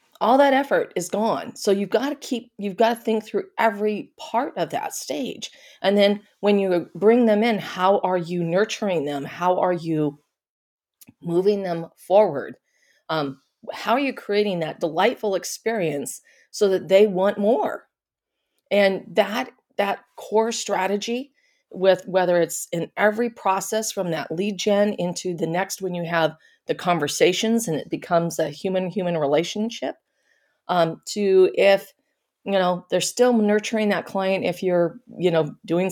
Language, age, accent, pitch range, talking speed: English, 40-59, American, 170-215 Hz, 160 wpm